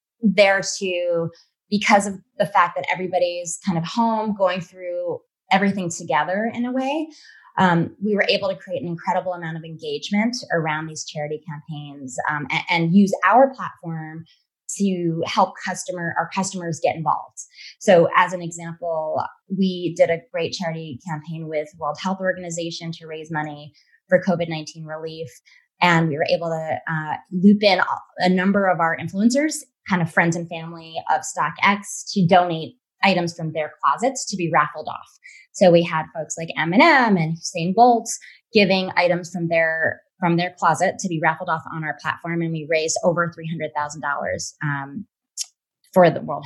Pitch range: 160-195 Hz